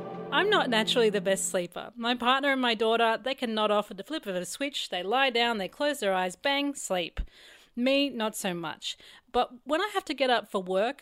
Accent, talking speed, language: Australian, 235 wpm, English